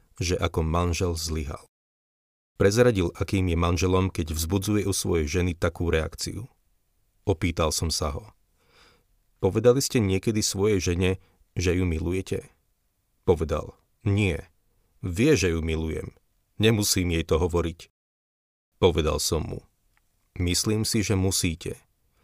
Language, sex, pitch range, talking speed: Slovak, male, 85-100 Hz, 120 wpm